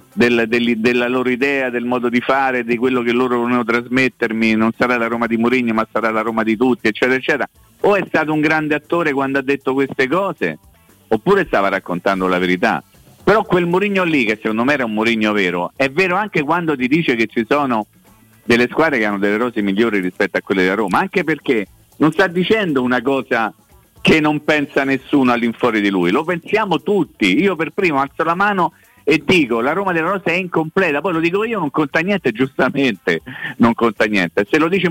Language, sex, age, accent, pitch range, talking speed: Italian, male, 50-69, native, 120-165 Hz, 210 wpm